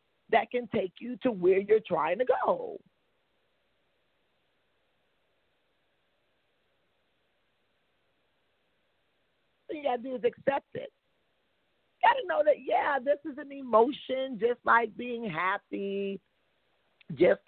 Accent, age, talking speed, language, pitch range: American, 40-59, 115 wpm, English, 200-285 Hz